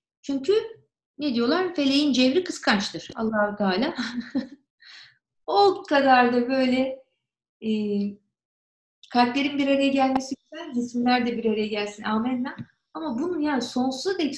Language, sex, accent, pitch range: Turkish, female, native, 195-270 Hz